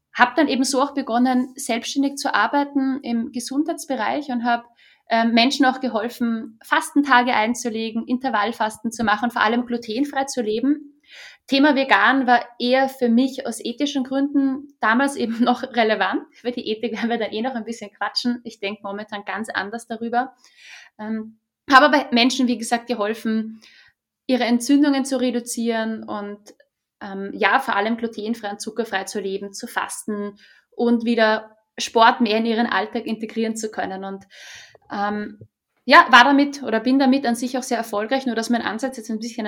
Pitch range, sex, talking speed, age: 220-260 Hz, female, 165 wpm, 20-39